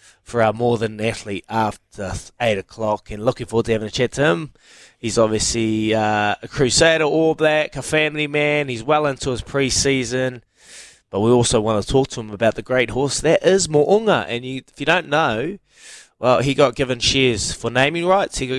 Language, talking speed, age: English, 205 wpm, 20-39